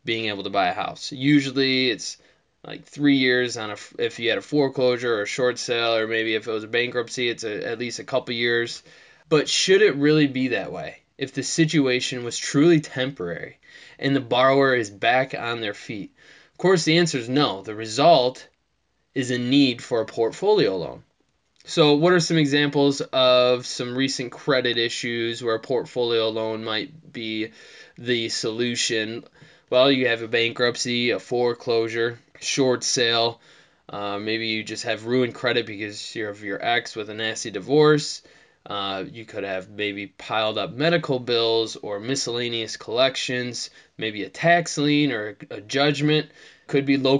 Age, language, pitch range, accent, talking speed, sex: 20-39, English, 115-140 Hz, American, 175 wpm, male